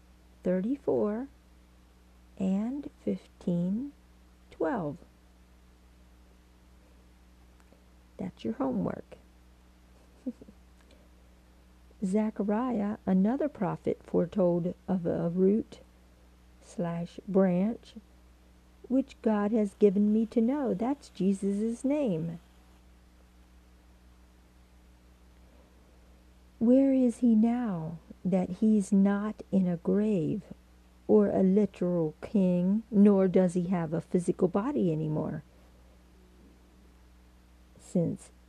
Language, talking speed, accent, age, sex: English, 80 wpm, American, 50-69, female